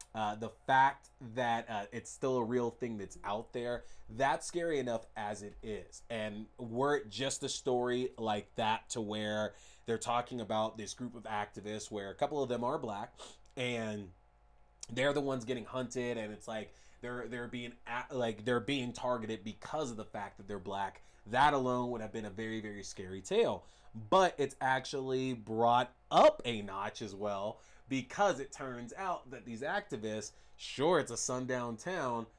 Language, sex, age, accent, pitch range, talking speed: English, male, 20-39, American, 110-130 Hz, 180 wpm